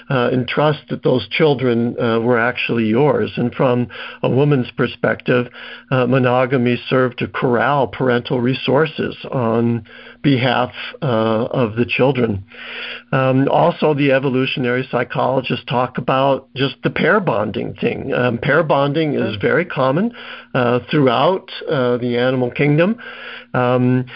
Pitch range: 125-140 Hz